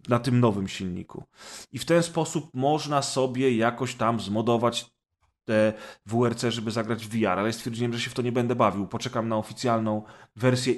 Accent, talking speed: native, 185 wpm